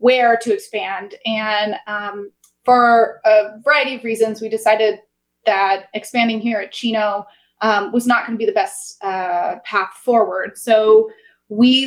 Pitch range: 215-250 Hz